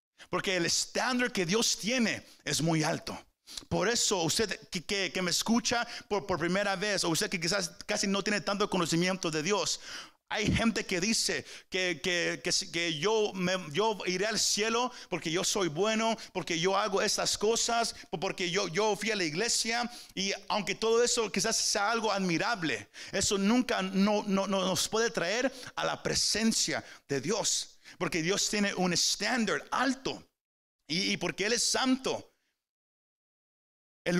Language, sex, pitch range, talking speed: Spanish, male, 170-220 Hz, 170 wpm